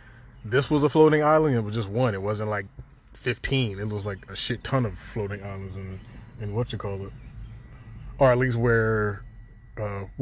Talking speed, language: 195 wpm, English